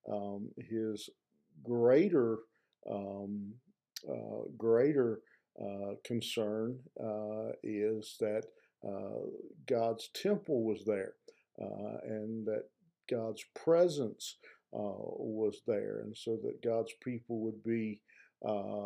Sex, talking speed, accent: male, 100 wpm, American